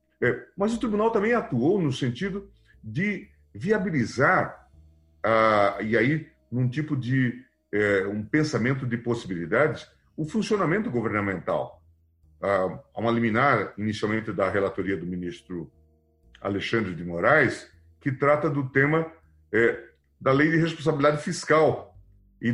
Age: 40-59